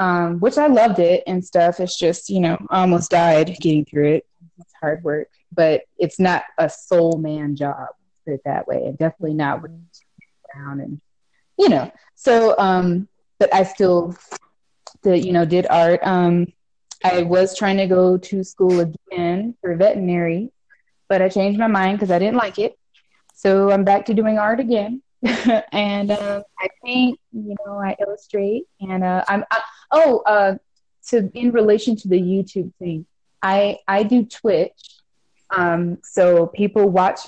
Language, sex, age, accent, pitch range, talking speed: English, female, 20-39, American, 175-225 Hz, 170 wpm